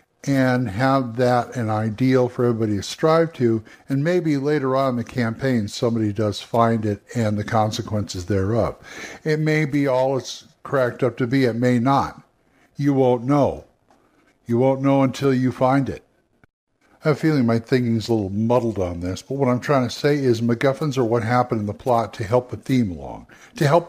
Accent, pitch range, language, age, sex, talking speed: American, 115-135 Hz, English, 60-79, male, 200 wpm